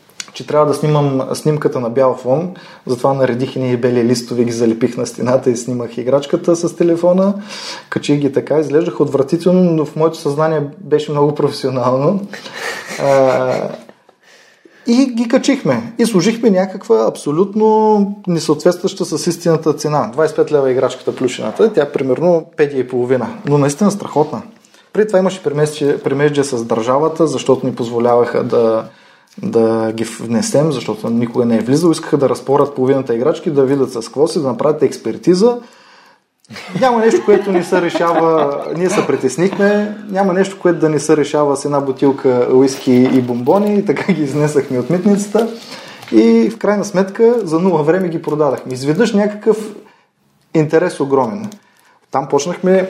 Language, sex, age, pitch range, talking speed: Bulgarian, male, 20-39, 135-185 Hz, 150 wpm